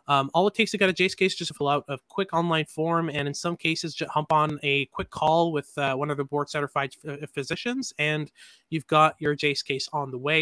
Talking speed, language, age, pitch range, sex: 265 wpm, English, 20-39, 140-165 Hz, male